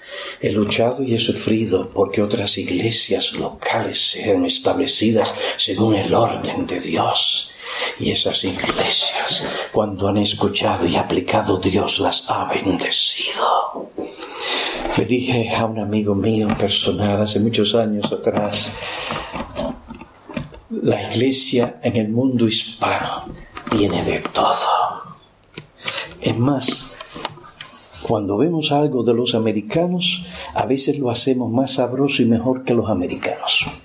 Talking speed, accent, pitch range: 120 wpm, Spanish, 105-135 Hz